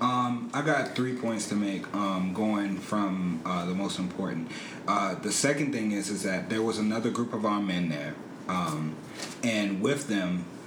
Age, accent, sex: 30-49, American, male